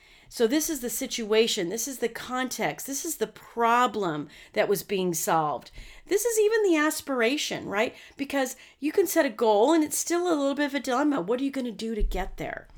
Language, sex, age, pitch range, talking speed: English, female, 40-59, 190-265 Hz, 215 wpm